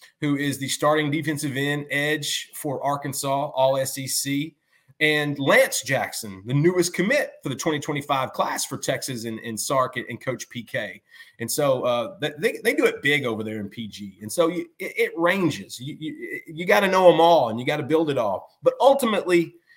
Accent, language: American, English